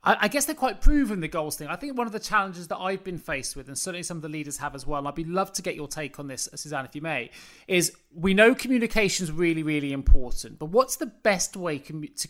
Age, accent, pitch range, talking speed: 30-49, British, 155-195 Hz, 270 wpm